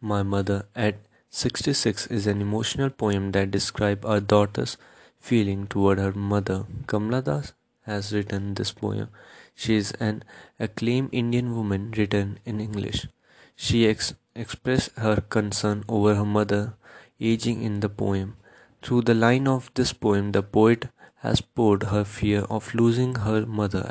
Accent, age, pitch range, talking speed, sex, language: Indian, 20-39, 105-120 Hz, 150 wpm, male, English